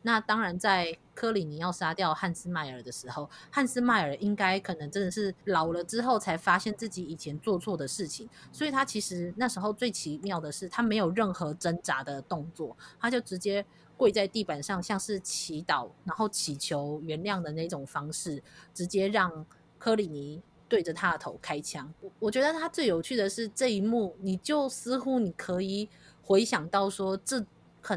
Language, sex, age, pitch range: Chinese, female, 20-39, 160-215 Hz